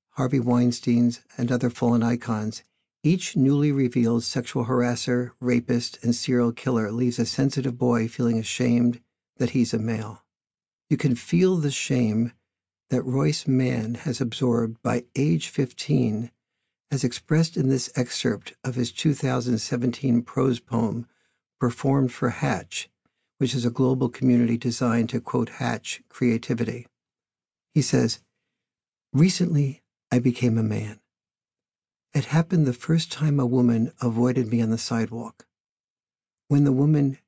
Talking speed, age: 135 wpm, 60-79